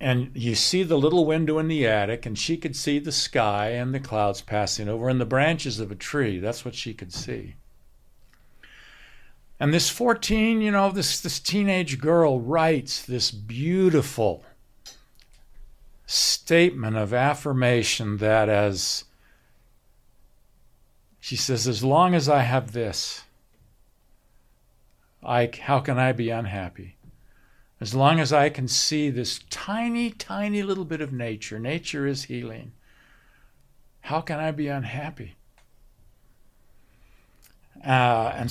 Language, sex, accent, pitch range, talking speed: English, male, American, 110-150 Hz, 130 wpm